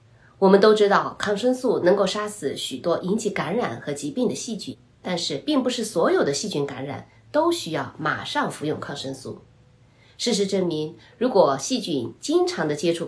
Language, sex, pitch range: Chinese, female, 130-210 Hz